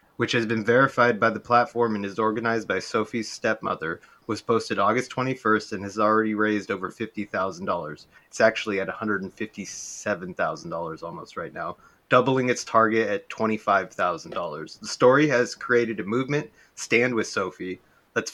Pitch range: 110-125 Hz